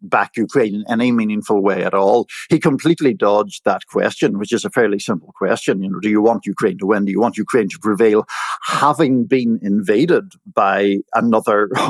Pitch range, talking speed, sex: 100-130 Hz, 190 wpm, male